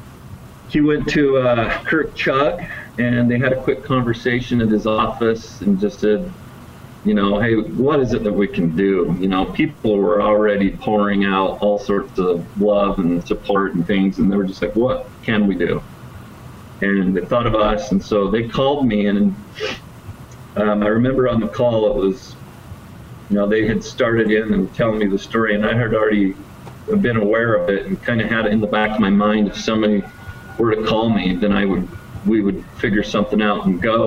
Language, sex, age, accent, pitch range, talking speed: English, male, 40-59, American, 100-120 Hz, 205 wpm